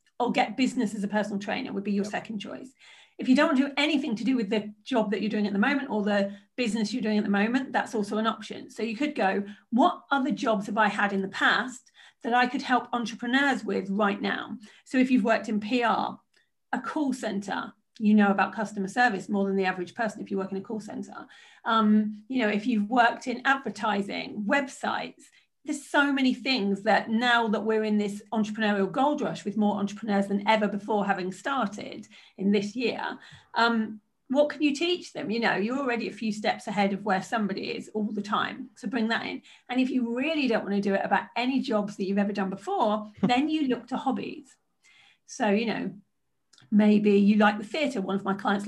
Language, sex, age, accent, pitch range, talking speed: English, female, 40-59, British, 205-255 Hz, 225 wpm